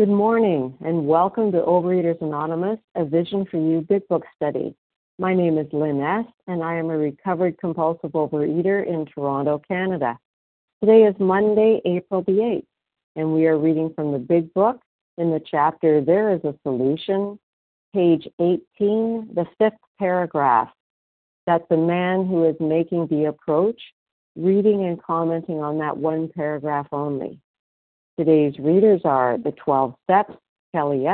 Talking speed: 150 wpm